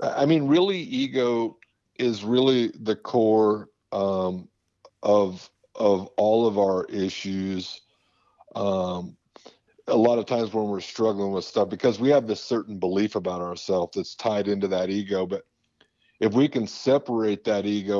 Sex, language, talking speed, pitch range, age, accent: male, English, 150 wpm, 100-115 Hz, 50-69, American